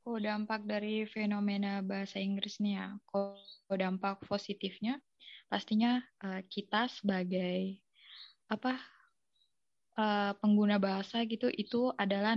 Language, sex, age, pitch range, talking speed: Indonesian, female, 20-39, 195-220 Hz, 105 wpm